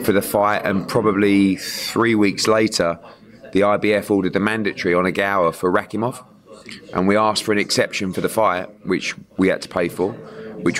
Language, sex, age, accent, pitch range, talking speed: English, male, 20-39, British, 90-105 Hz, 190 wpm